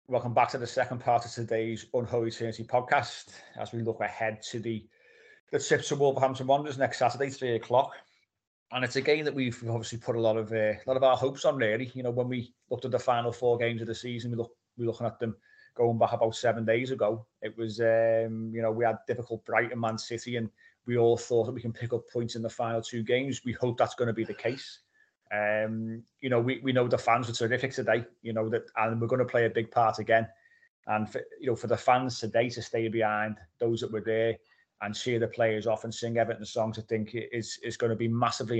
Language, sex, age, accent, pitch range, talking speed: English, male, 30-49, British, 110-125 Hz, 245 wpm